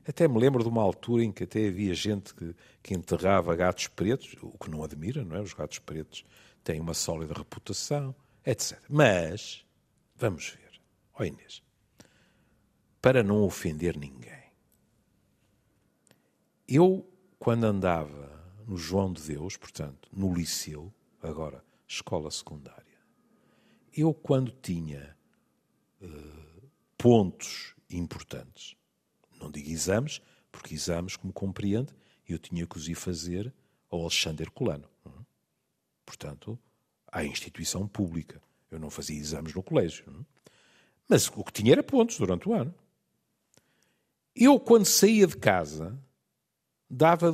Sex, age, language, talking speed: male, 60-79, Portuguese, 125 wpm